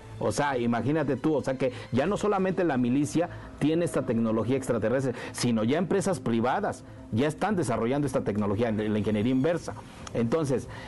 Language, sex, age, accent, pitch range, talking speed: Spanish, male, 50-69, Mexican, 110-145 Hz, 165 wpm